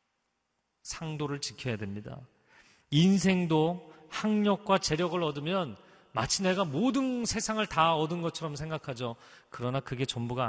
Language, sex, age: Korean, male, 40-59